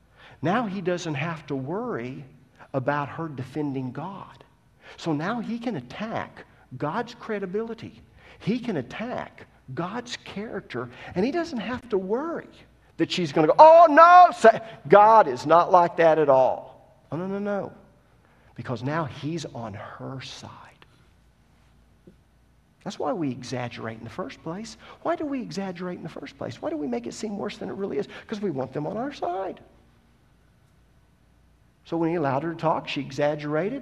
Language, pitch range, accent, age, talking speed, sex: English, 130-185 Hz, American, 50-69, 170 wpm, male